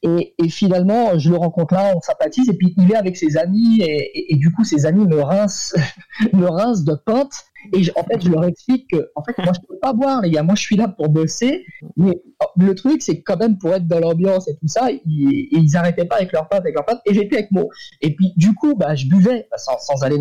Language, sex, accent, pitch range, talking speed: French, male, French, 155-210 Hz, 275 wpm